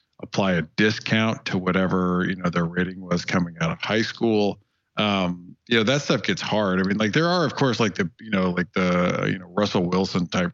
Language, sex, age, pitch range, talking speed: English, male, 40-59, 90-110 Hz, 230 wpm